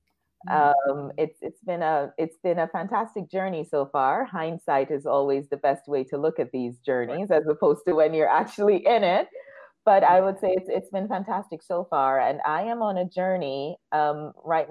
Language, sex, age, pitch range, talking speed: English, female, 30-49, 135-175 Hz, 200 wpm